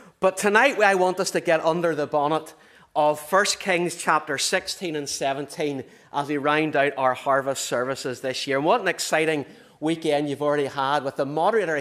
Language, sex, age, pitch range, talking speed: English, male, 30-49, 115-160 Hz, 190 wpm